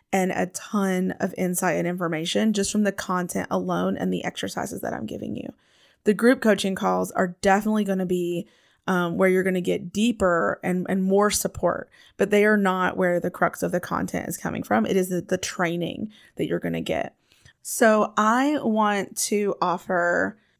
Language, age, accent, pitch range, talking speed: English, 20-39, American, 180-215 Hz, 190 wpm